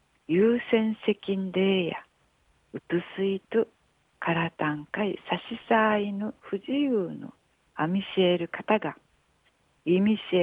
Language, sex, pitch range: Japanese, female, 170-220 Hz